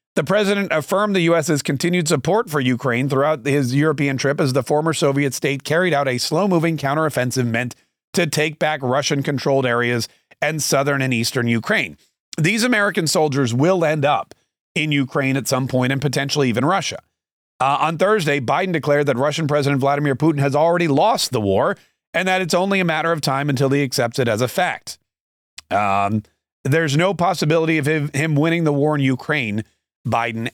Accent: American